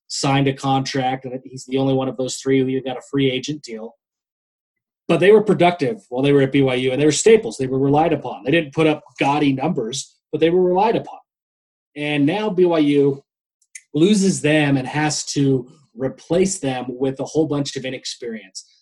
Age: 30-49